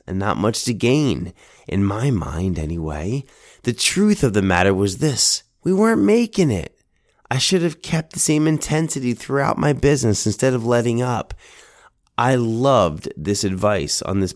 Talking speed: 165 wpm